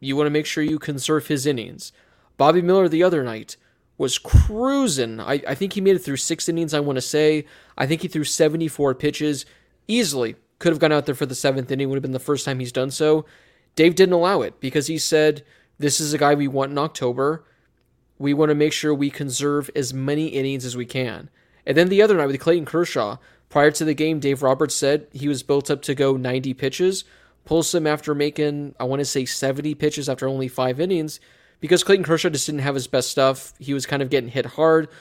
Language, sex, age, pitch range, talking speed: English, male, 20-39, 135-155 Hz, 230 wpm